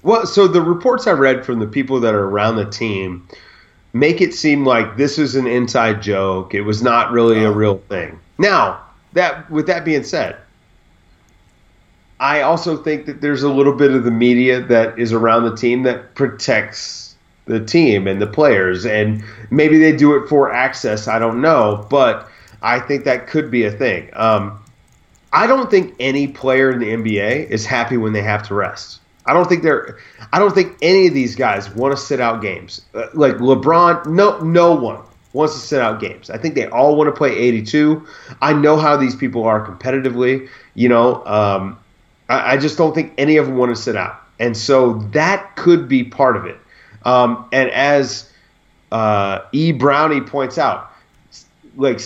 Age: 30-49